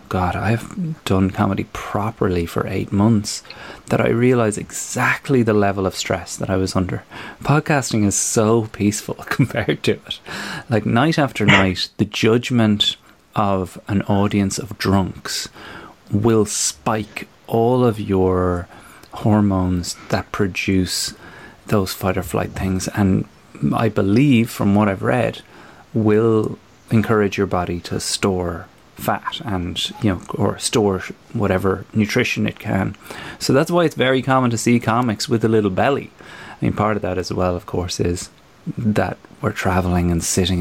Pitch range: 95-115 Hz